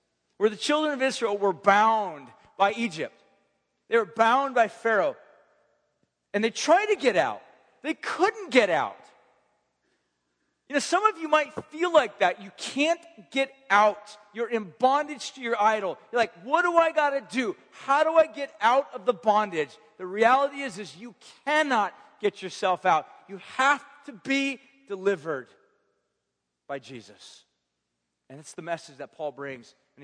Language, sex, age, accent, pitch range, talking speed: English, male, 40-59, American, 175-250 Hz, 165 wpm